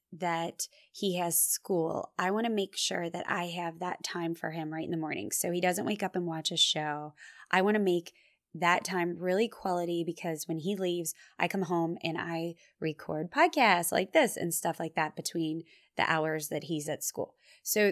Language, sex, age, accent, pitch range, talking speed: English, female, 20-39, American, 165-220 Hz, 210 wpm